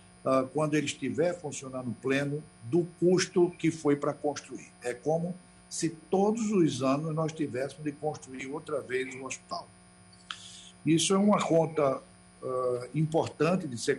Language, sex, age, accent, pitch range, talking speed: Portuguese, male, 60-79, Brazilian, 120-155 Hz, 140 wpm